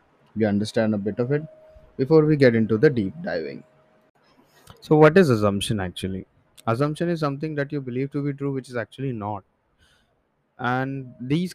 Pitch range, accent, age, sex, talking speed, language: 115-145 Hz, Indian, 20-39, male, 170 wpm, English